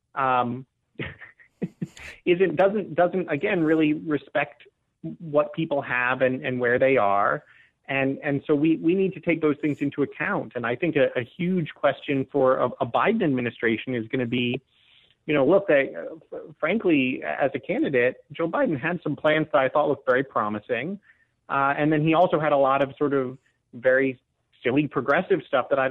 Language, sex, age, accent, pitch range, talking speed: English, male, 30-49, American, 120-150 Hz, 185 wpm